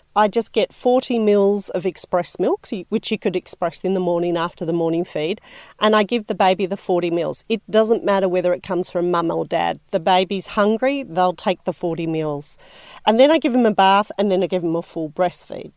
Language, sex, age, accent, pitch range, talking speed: English, female, 40-59, Australian, 170-220 Hz, 230 wpm